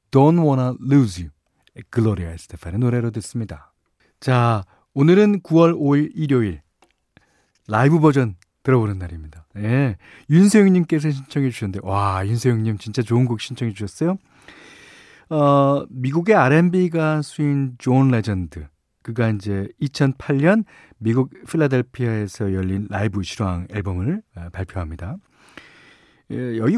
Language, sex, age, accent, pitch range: Korean, male, 40-59, native, 110-160 Hz